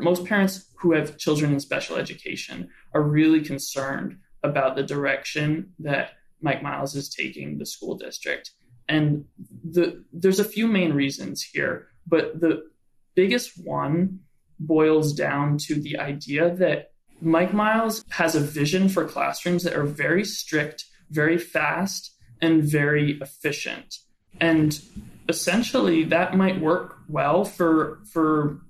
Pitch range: 145-175 Hz